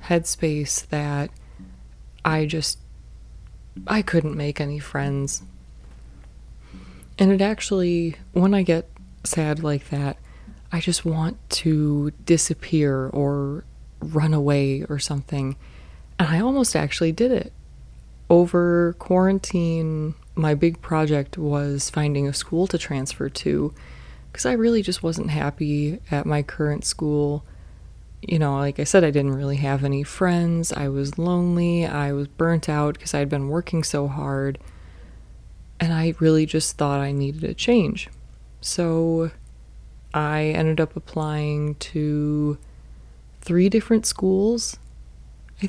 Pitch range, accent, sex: 140-170 Hz, American, female